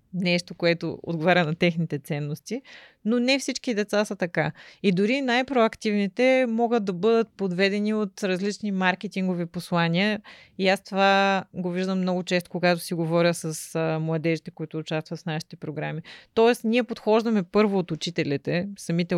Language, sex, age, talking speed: Bulgarian, female, 30-49, 145 wpm